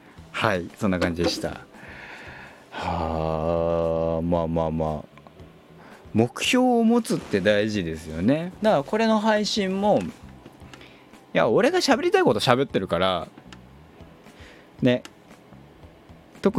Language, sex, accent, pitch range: Japanese, male, native, 85-125 Hz